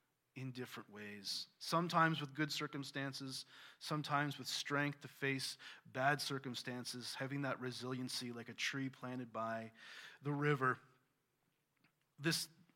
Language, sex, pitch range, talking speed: English, male, 130-160 Hz, 120 wpm